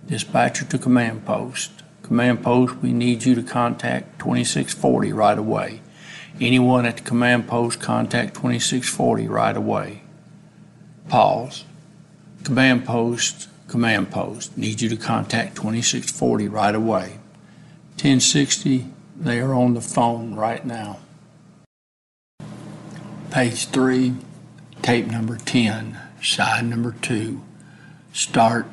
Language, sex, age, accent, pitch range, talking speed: English, male, 60-79, American, 115-130 Hz, 110 wpm